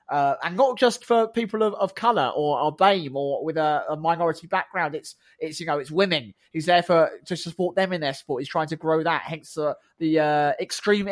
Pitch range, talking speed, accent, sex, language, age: 155-210 Hz, 225 wpm, British, male, English, 20-39